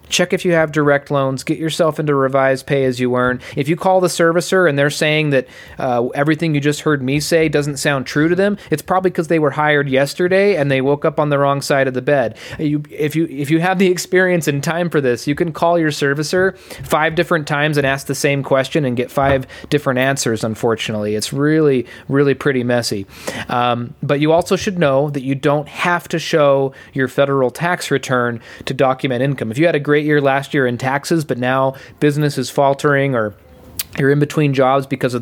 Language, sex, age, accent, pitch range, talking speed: English, male, 30-49, American, 130-155 Hz, 220 wpm